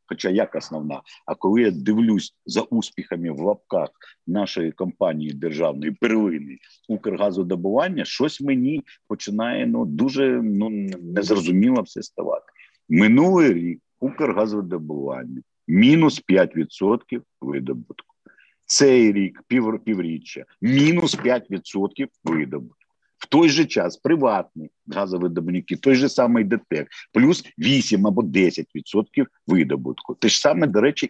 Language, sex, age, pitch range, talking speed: Ukrainian, male, 50-69, 85-135 Hz, 115 wpm